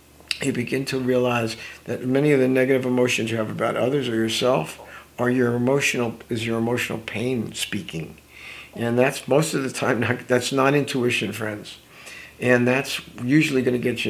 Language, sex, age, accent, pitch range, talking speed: English, male, 50-69, American, 115-140 Hz, 180 wpm